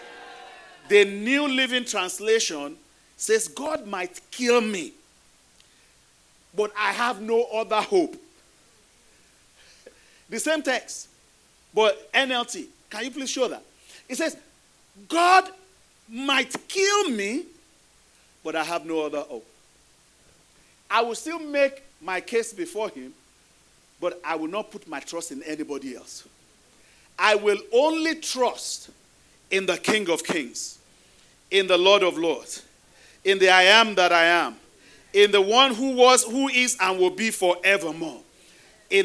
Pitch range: 180-290 Hz